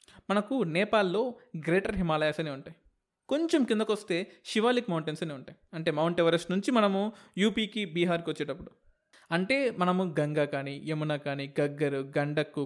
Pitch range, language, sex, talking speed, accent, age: 160-215 Hz, Telugu, male, 135 wpm, native, 20-39